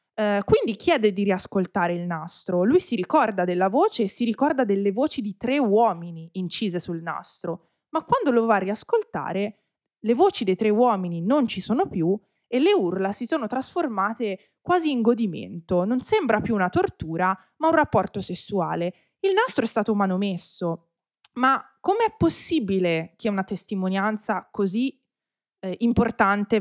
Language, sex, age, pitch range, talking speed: Italian, female, 20-39, 180-260 Hz, 155 wpm